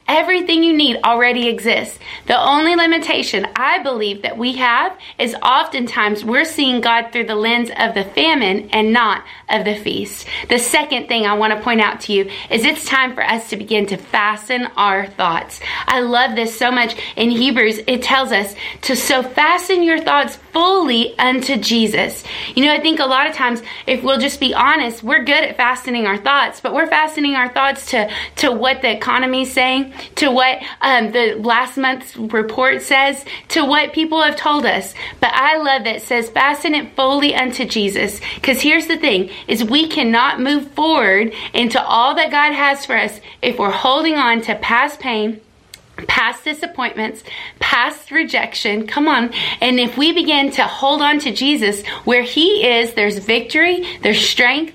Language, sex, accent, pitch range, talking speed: English, female, American, 230-290 Hz, 185 wpm